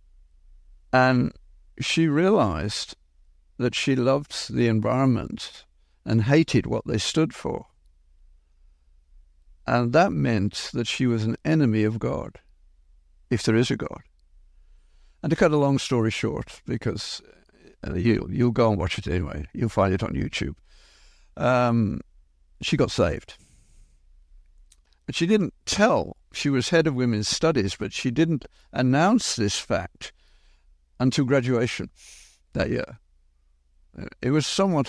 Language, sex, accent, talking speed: English, male, British, 130 wpm